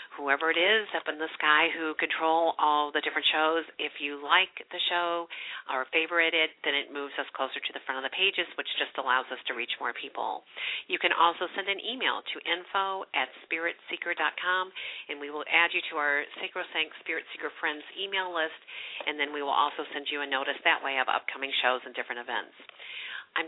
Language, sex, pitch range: English, female, 145-180 Hz